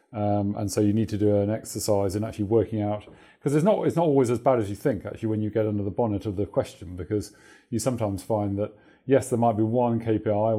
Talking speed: 250 wpm